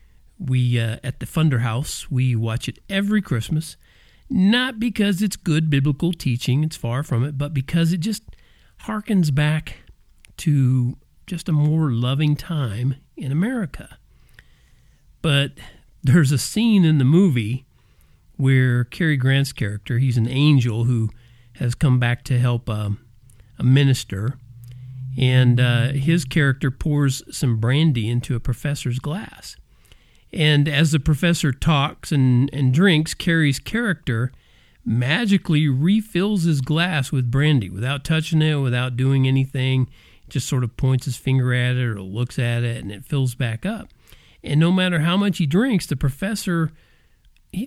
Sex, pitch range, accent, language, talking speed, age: male, 125-165 Hz, American, English, 145 wpm, 50-69